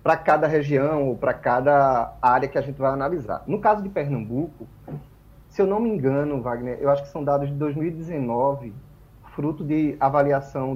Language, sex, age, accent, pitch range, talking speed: Portuguese, male, 30-49, Brazilian, 135-185 Hz, 180 wpm